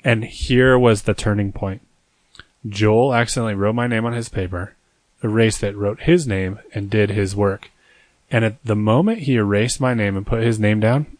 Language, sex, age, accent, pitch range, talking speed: English, male, 20-39, American, 105-135 Hz, 195 wpm